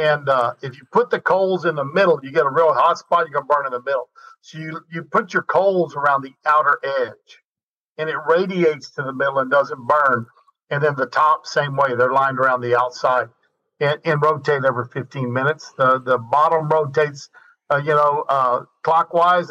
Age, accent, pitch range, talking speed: 50-69, American, 135-170 Hz, 210 wpm